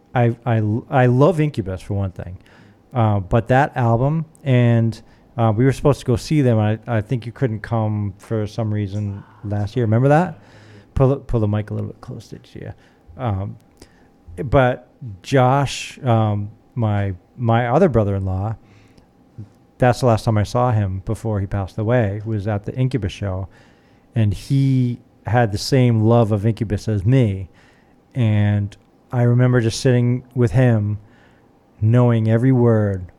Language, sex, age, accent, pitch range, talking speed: English, male, 40-59, American, 105-125 Hz, 160 wpm